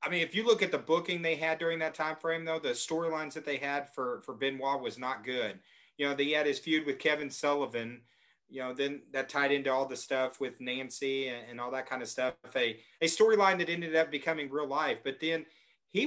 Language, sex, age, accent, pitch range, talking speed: English, male, 40-59, American, 140-195 Hz, 245 wpm